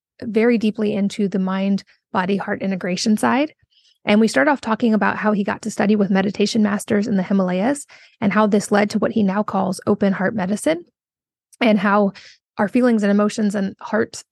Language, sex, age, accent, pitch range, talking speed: English, female, 20-39, American, 200-230 Hz, 195 wpm